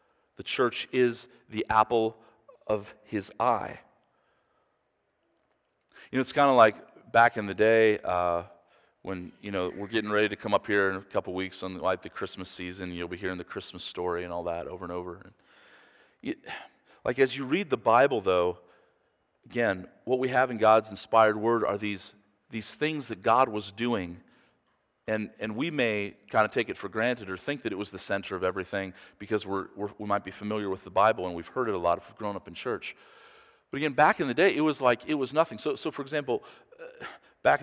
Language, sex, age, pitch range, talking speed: English, male, 40-59, 95-130 Hz, 210 wpm